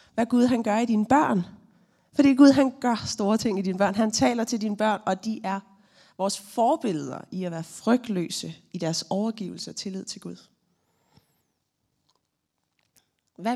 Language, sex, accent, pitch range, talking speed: Danish, female, native, 180-235 Hz, 170 wpm